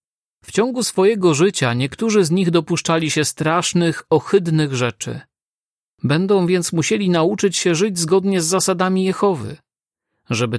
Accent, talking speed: native, 130 wpm